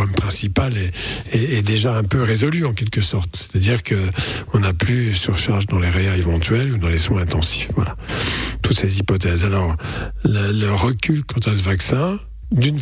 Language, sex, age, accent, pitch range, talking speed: French, male, 50-69, French, 95-120 Hz, 185 wpm